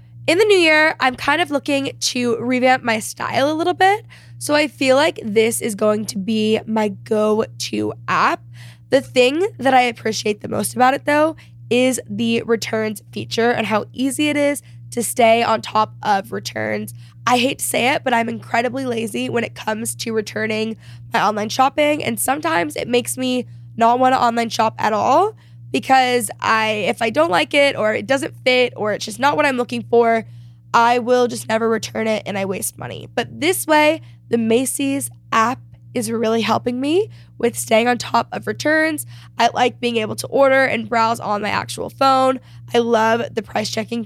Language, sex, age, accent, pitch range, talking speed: English, female, 10-29, American, 210-260 Hz, 195 wpm